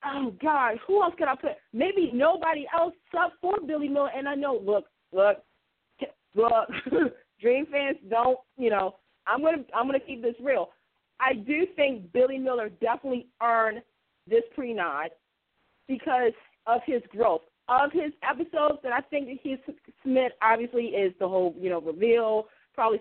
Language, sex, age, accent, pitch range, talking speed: English, female, 40-59, American, 225-320 Hz, 165 wpm